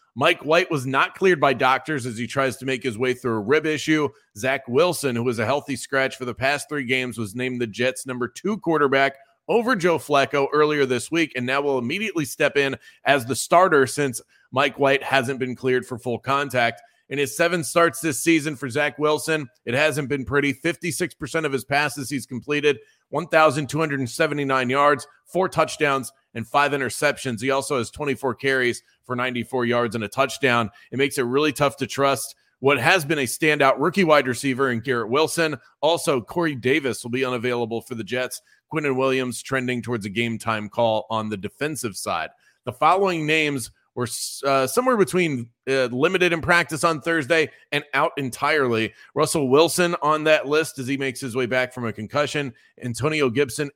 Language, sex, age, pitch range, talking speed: English, male, 30-49, 125-150 Hz, 190 wpm